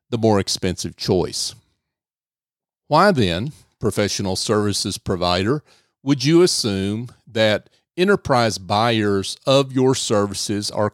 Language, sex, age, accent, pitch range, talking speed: English, male, 50-69, American, 105-135 Hz, 105 wpm